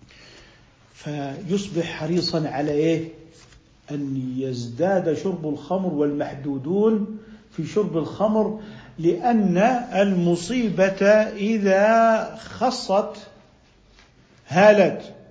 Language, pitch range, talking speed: Arabic, 165-230 Hz, 65 wpm